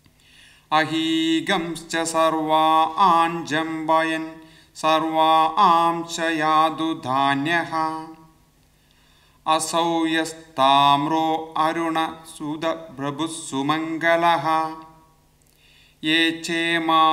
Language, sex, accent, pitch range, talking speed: German, male, Indian, 155-165 Hz, 60 wpm